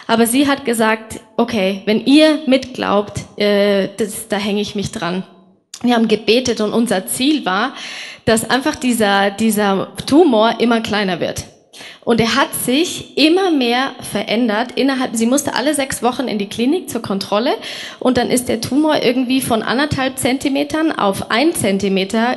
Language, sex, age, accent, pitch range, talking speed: German, female, 20-39, German, 210-255 Hz, 155 wpm